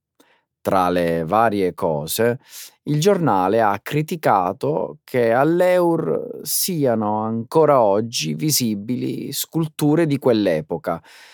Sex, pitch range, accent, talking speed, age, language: male, 90-125 Hz, native, 90 wpm, 30-49, Italian